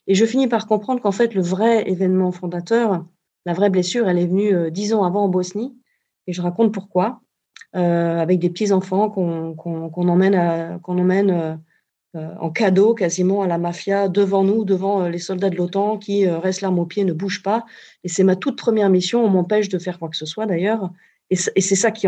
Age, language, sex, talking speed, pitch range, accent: 40-59, French, female, 220 wpm, 175-205 Hz, French